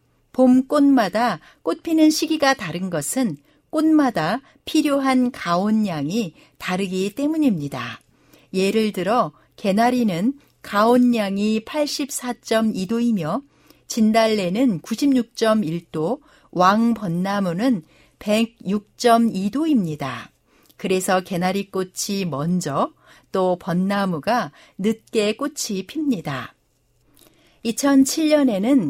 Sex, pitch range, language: female, 190-255 Hz, Korean